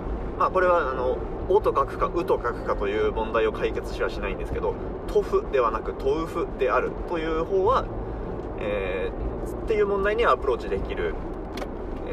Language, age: Japanese, 30-49